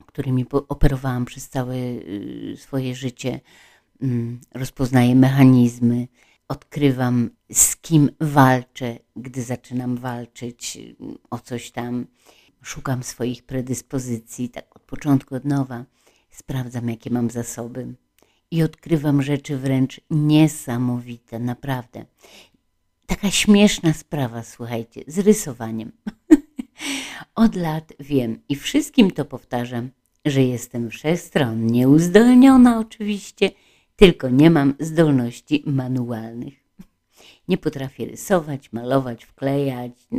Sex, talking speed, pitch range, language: female, 95 wpm, 120-150 Hz, Polish